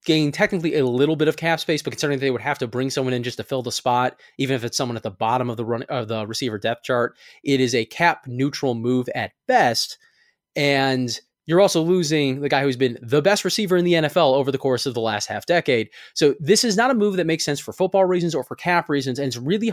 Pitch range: 125-170 Hz